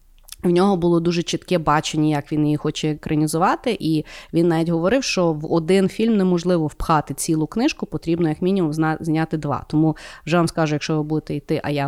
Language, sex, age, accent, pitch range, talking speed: Ukrainian, female, 30-49, native, 160-200 Hz, 195 wpm